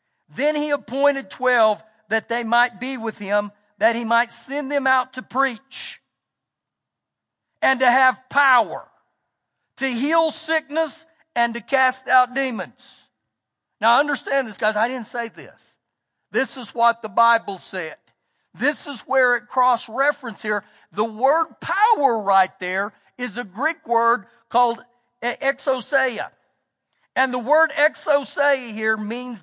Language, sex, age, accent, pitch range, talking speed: English, male, 50-69, American, 230-275 Hz, 135 wpm